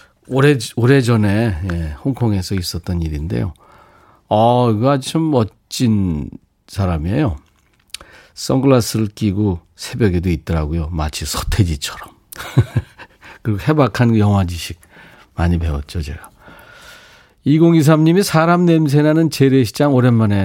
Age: 50-69